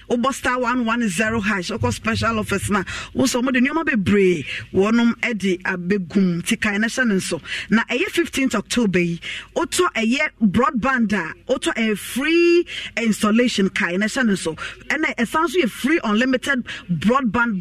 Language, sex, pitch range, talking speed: English, female, 185-235 Hz, 135 wpm